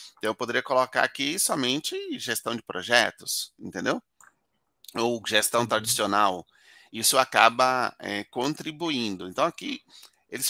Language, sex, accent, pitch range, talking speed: Portuguese, male, Brazilian, 115-140 Hz, 110 wpm